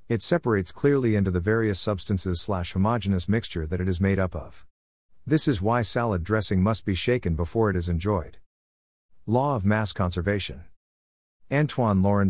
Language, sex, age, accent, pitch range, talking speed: English, male, 50-69, American, 90-115 Hz, 160 wpm